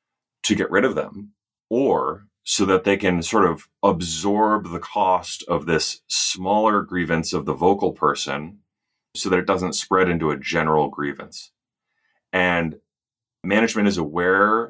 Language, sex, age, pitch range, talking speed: English, male, 30-49, 80-95 Hz, 145 wpm